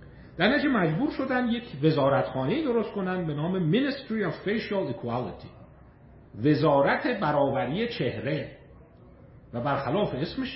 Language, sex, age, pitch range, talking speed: Persian, male, 50-69, 120-180 Hz, 110 wpm